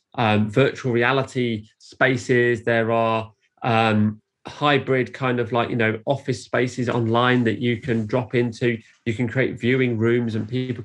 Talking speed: 155 wpm